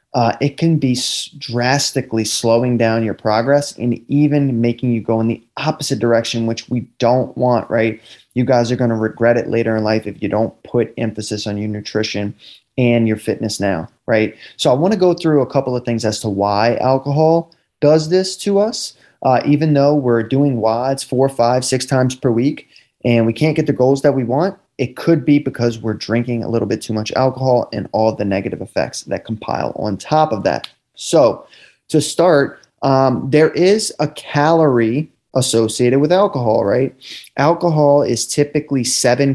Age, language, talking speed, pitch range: 20-39, English, 190 wpm, 115-145 Hz